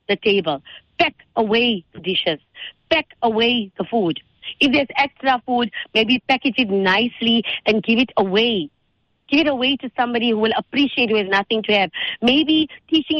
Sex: female